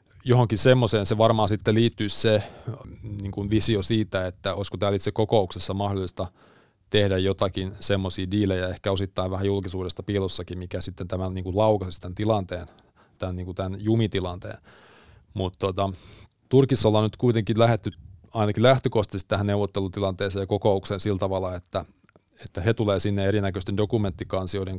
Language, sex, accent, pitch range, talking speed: Finnish, male, native, 95-110 Hz, 140 wpm